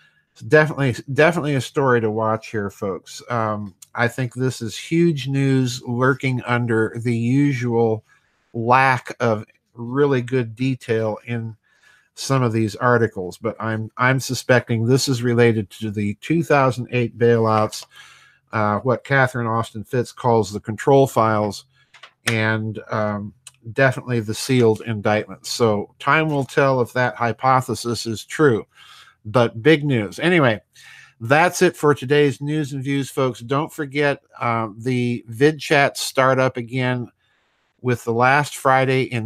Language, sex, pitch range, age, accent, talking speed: English, male, 110-130 Hz, 50-69, American, 140 wpm